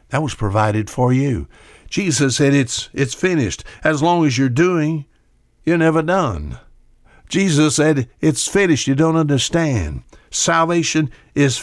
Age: 60-79